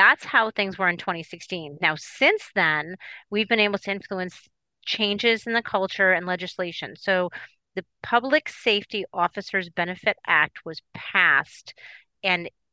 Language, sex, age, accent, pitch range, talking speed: English, female, 30-49, American, 175-205 Hz, 140 wpm